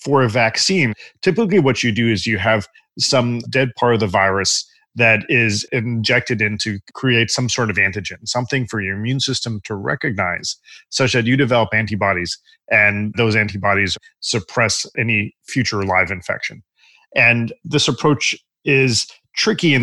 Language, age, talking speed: English, 40-59, 155 wpm